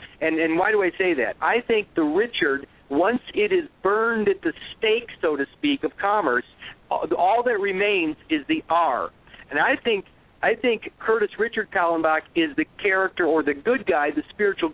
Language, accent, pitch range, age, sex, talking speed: English, American, 150-245 Hz, 50-69, male, 185 wpm